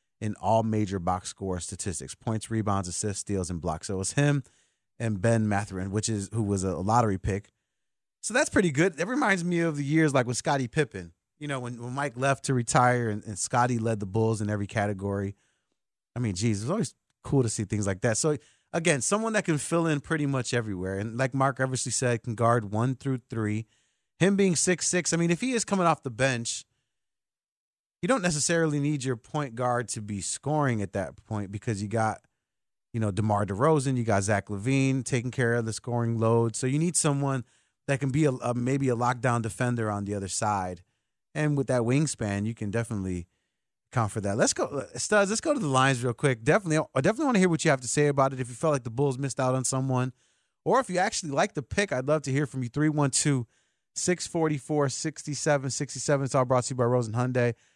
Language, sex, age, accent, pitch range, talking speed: English, male, 30-49, American, 110-145 Hz, 220 wpm